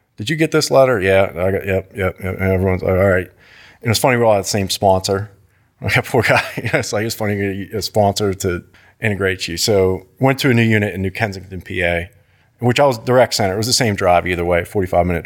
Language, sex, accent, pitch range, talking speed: English, male, American, 95-110 Hz, 245 wpm